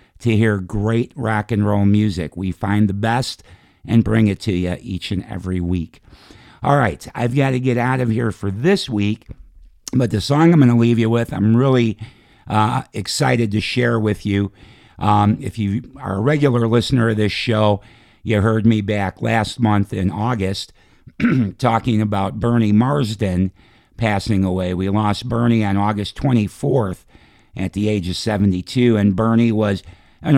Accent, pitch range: American, 95-120 Hz